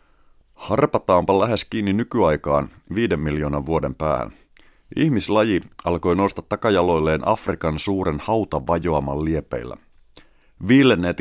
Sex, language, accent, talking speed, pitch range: male, Finnish, native, 95 wpm, 75-95 Hz